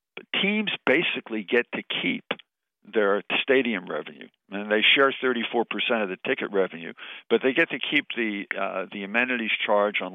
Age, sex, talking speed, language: 50-69, male, 160 wpm, English